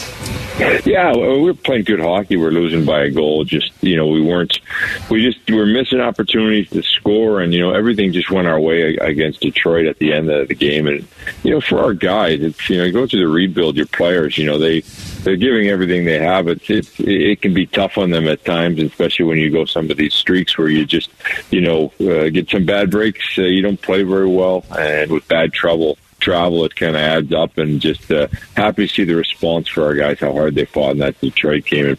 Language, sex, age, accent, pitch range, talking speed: English, male, 40-59, American, 80-100 Hz, 235 wpm